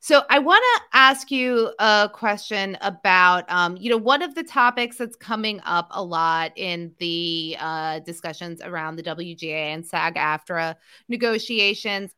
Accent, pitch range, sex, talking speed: American, 165-220 Hz, female, 155 wpm